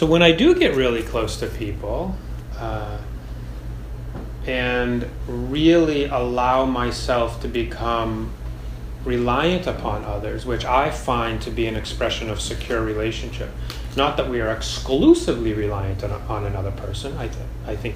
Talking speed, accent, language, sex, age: 145 wpm, American, English, male, 30-49